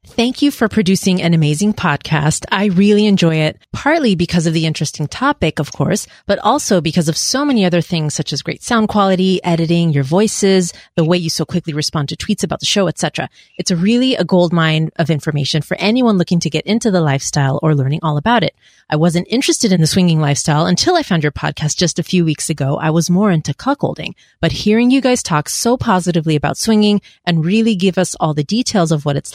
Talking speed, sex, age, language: 220 wpm, female, 30-49, English